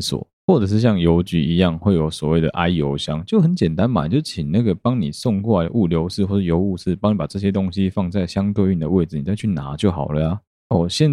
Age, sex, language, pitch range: 20-39, male, Chinese, 80-100 Hz